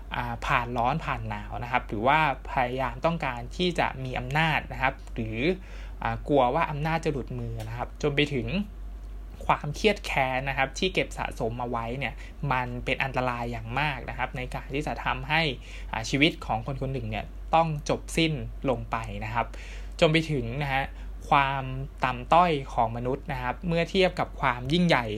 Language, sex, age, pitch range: Thai, male, 20-39, 120-155 Hz